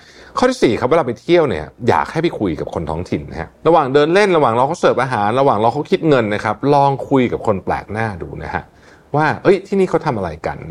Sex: male